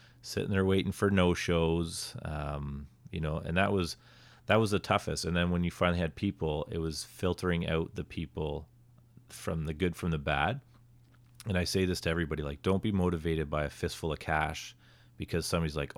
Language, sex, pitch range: English, male, 80-100 Hz